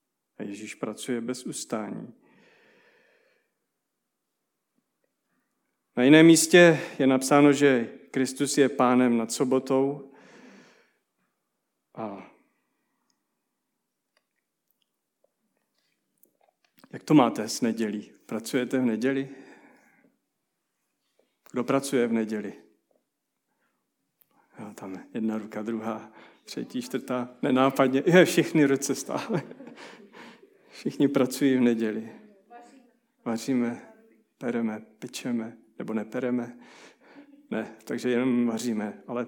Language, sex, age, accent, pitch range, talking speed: Czech, male, 40-59, native, 115-165 Hz, 80 wpm